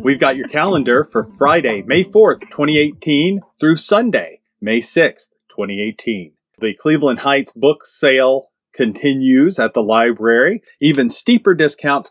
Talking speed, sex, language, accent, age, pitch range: 130 wpm, male, English, American, 30-49, 125-165 Hz